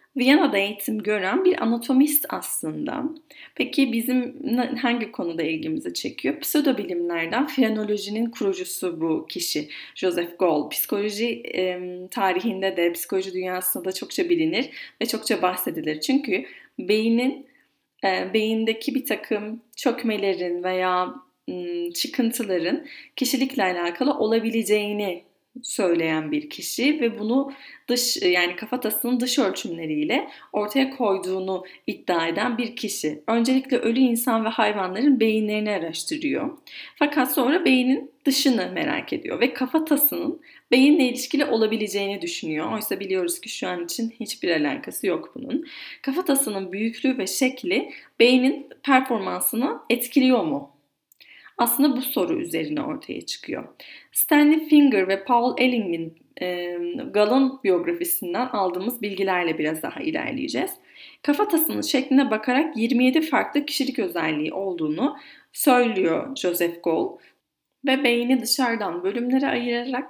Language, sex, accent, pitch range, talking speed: Turkish, female, native, 195-275 Hz, 115 wpm